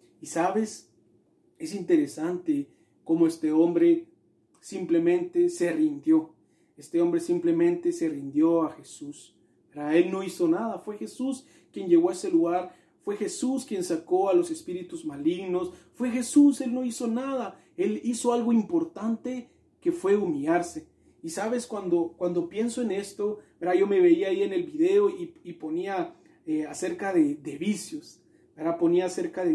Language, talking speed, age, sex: Spanish, 150 wpm, 40-59, male